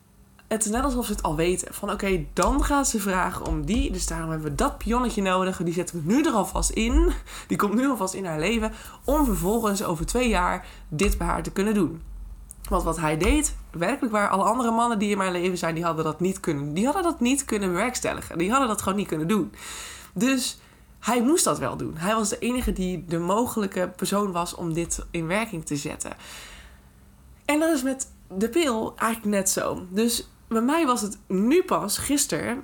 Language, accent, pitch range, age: Dutch, Dutch, 165-225 Hz, 20-39